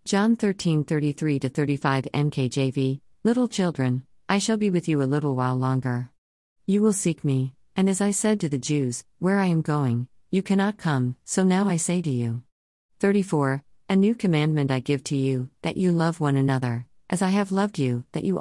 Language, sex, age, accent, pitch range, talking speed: English, female, 50-69, American, 130-175 Hz, 190 wpm